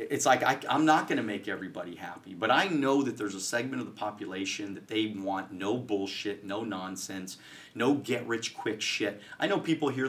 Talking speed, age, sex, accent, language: 200 wpm, 30-49, male, American, English